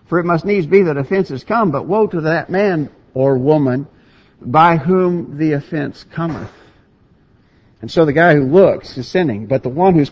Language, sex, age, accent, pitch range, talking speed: English, male, 60-79, American, 130-190 Hz, 190 wpm